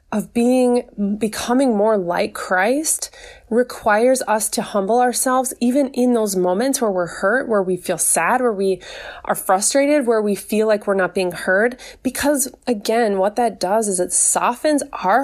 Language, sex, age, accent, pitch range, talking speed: English, female, 20-39, American, 205-265 Hz, 170 wpm